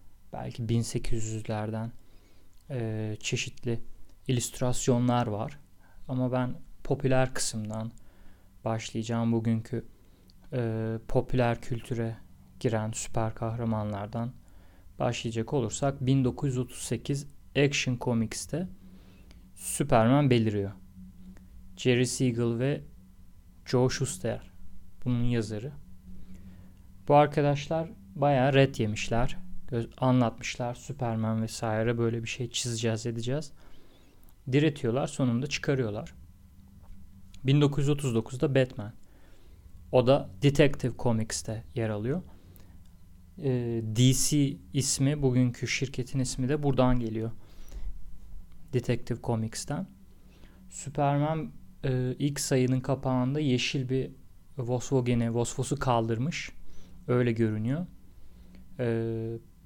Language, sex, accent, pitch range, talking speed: Turkish, male, native, 95-130 Hz, 80 wpm